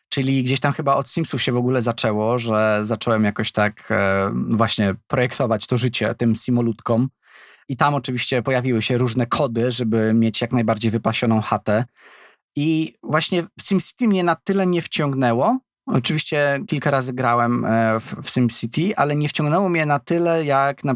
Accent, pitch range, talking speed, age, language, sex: native, 115-140 Hz, 165 wpm, 20-39, Polish, male